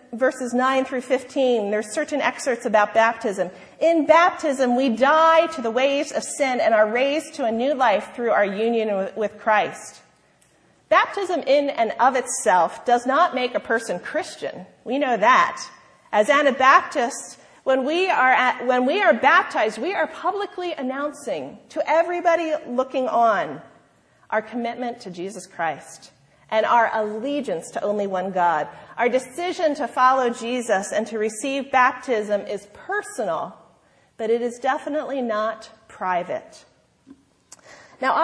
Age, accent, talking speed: 40-59, American, 145 wpm